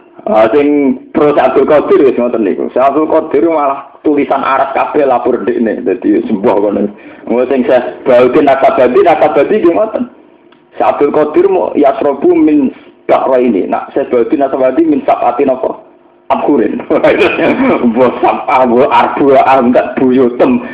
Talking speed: 145 wpm